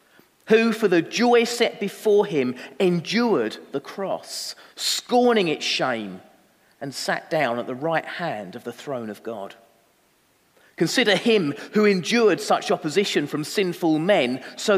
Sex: male